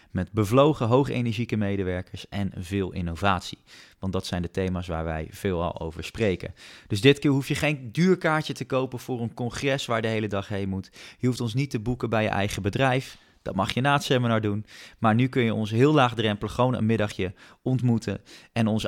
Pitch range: 95-125 Hz